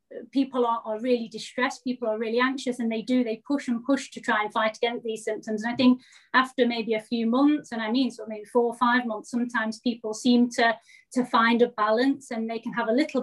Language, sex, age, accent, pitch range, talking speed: English, female, 30-49, British, 220-250 Hz, 245 wpm